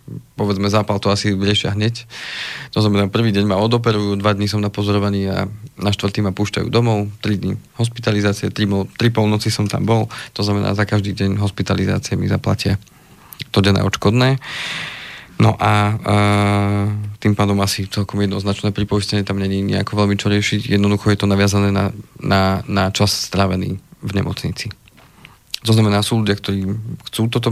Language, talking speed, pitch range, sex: Slovak, 165 wpm, 100-110 Hz, male